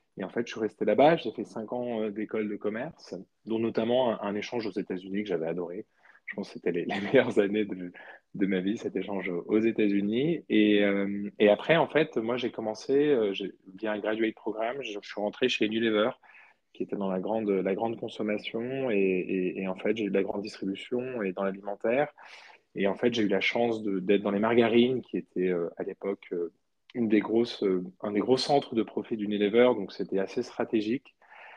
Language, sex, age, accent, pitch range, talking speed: French, male, 20-39, French, 100-115 Hz, 225 wpm